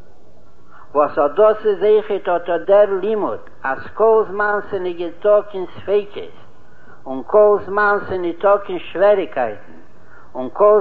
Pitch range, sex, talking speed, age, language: 175-210 Hz, male, 135 wpm, 60-79, Hebrew